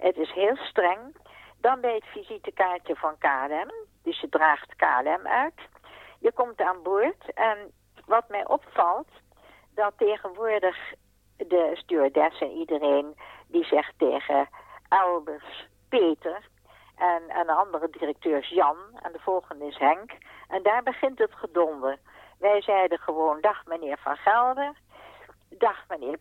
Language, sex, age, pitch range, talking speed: Dutch, female, 60-79, 165-245 Hz, 135 wpm